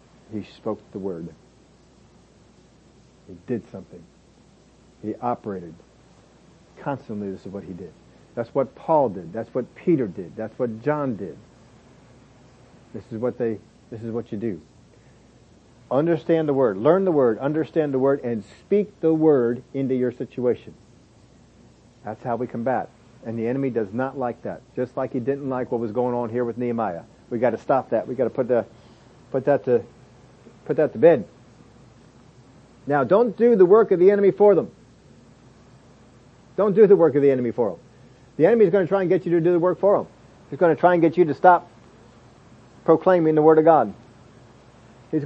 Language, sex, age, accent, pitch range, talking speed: English, male, 50-69, American, 120-175 Hz, 185 wpm